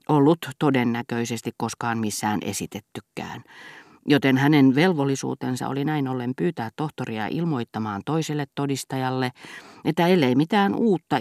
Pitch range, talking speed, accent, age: 120-155 Hz, 105 wpm, native, 40-59